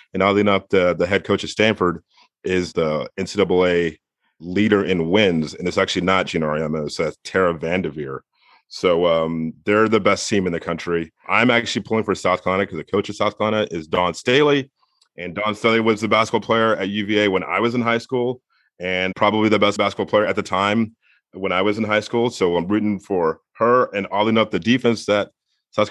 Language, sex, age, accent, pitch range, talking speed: English, male, 30-49, American, 95-115 Hz, 210 wpm